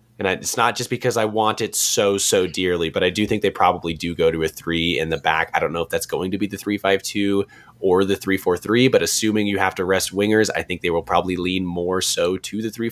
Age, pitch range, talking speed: 20-39, 90-110 Hz, 280 wpm